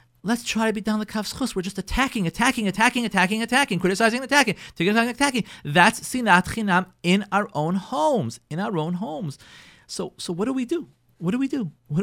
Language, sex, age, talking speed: English, male, 40-59, 200 wpm